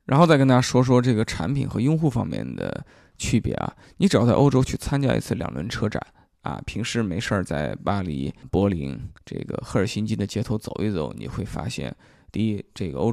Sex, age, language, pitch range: male, 20-39, Chinese, 100-125 Hz